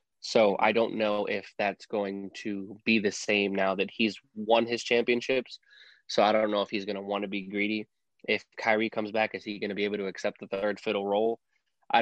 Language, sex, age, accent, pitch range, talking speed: English, male, 20-39, American, 105-115 Hz, 230 wpm